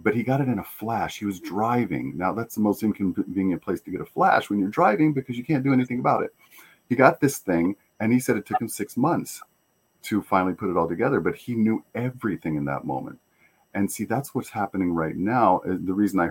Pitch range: 85-110 Hz